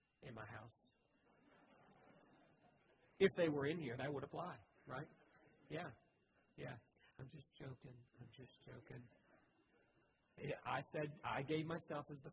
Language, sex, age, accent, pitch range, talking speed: English, male, 50-69, American, 125-145 Hz, 130 wpm